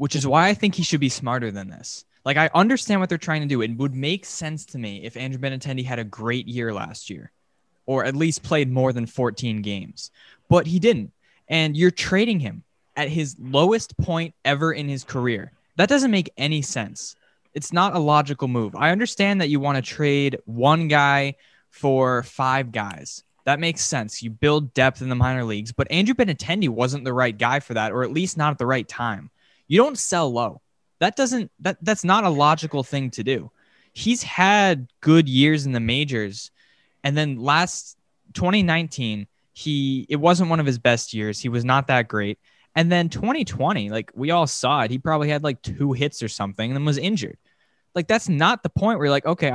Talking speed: 210 wpm